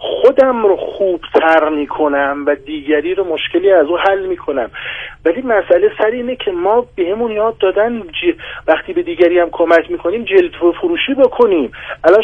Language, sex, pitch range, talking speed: Persian, male, 170-265 Hz, 175 wpm